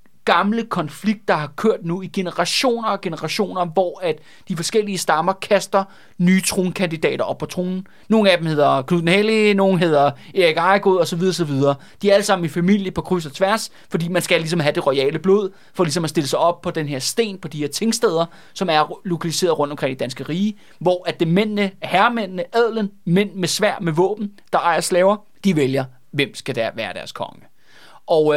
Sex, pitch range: male, 150-195 Hz